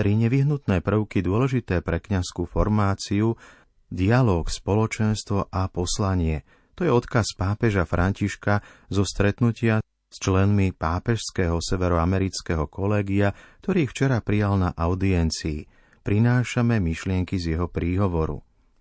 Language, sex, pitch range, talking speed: Slovak, male, 90-110 Hz, 110 wpm